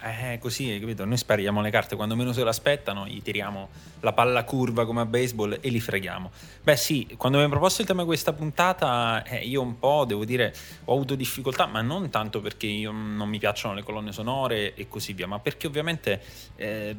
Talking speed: 215 wpm